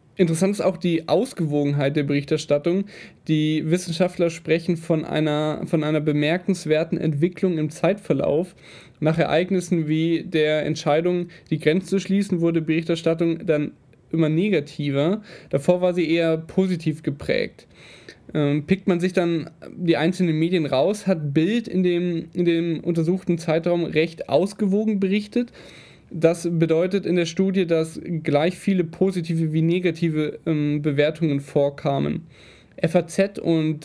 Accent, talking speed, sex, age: German, 125 wpm, male, 10-29